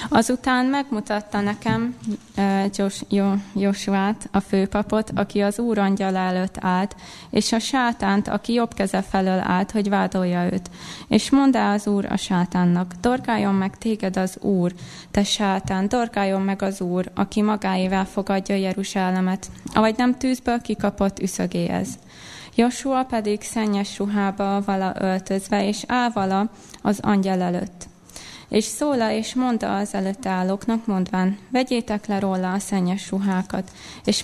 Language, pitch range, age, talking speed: Hungarian, 190-220 Hz, 20-39, 140 wpm